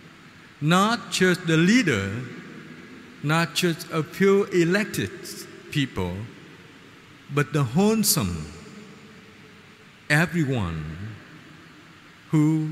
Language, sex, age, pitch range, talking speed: Vietnamese, male, 50-69, 145-185 Hz, 70 wpm